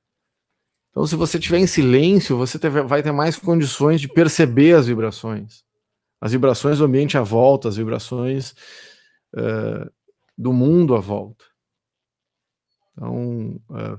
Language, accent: Portuguese, Brazilian